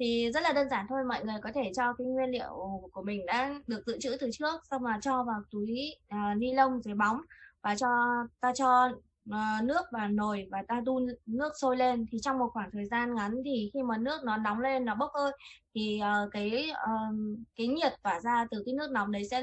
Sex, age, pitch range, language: female, 20-39, 220-270 Hz, Japanese